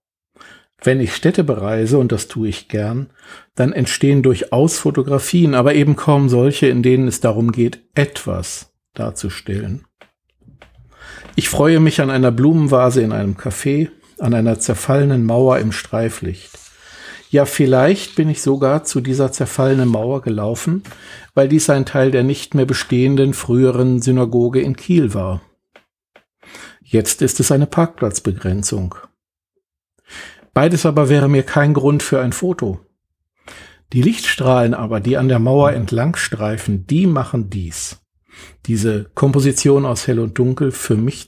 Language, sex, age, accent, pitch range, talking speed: German, male, 60-79, German, 115-140 Hz, 140 wpm